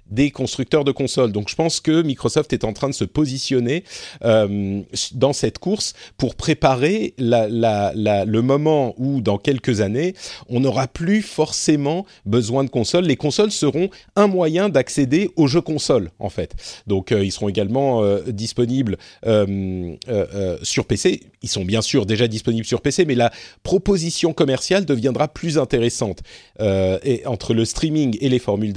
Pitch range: 105-150 Hz